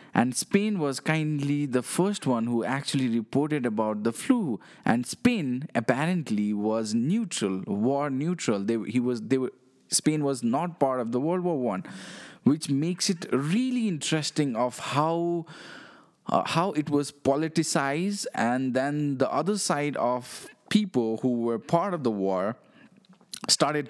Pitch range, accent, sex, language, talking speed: 125-195 Hz, Indian, male, English, 150 wpm